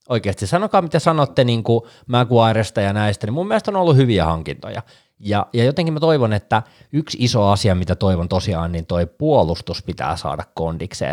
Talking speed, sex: 180 wpm, male